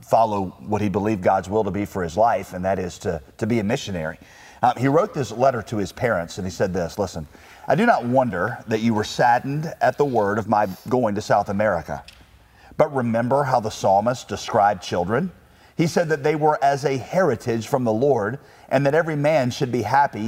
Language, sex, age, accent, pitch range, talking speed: English, male, 40-59, American, 105-145 Hz, 220 wpm